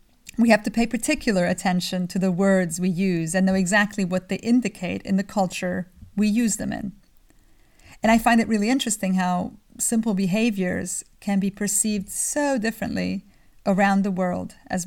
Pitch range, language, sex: 185-220 Hz, English, female